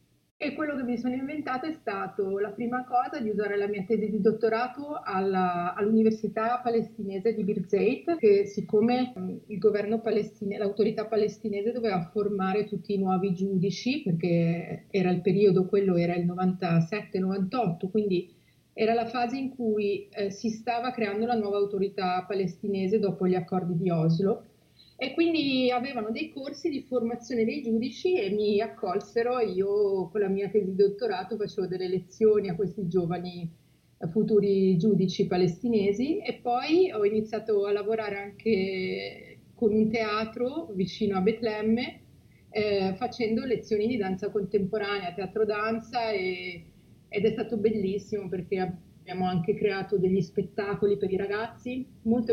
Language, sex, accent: Italian, female, native